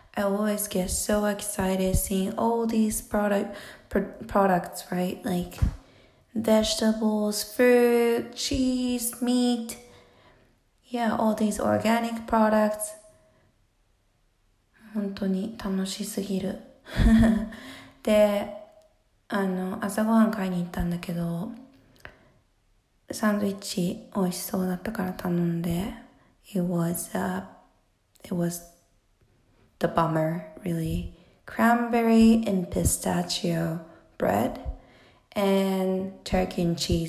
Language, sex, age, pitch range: Japanese, female, 20-39, 175-220 Hz